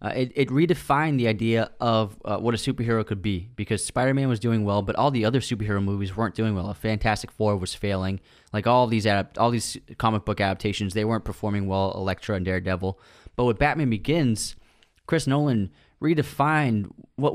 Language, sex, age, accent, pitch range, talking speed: English, male, 20-39, American, 100-125 Hz, 195 wpm